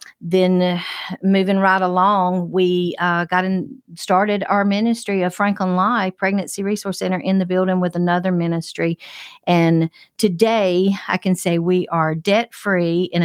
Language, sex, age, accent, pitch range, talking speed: English, female, 50-69, American, 160-185 Hz, 155 wpm